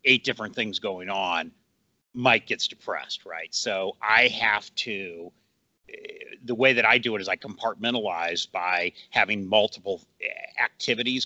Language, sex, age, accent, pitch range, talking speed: English, male, 40-59, American, 100-130 Hz, 140 wpm